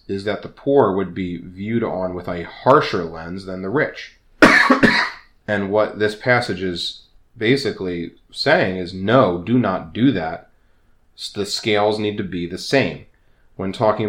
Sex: male